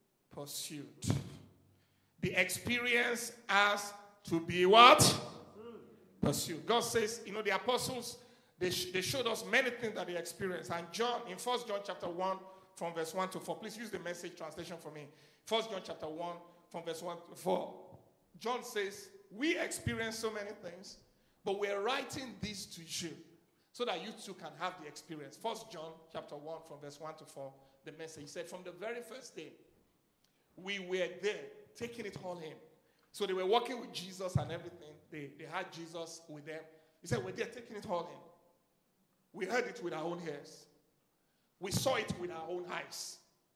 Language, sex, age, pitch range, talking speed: English, male, 50-69, 160-215 Hz, 185 wpm